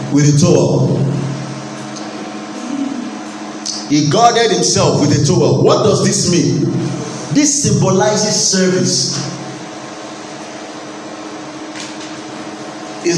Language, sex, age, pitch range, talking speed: English, male, 40-59, 130-195 Hz, 75 wpm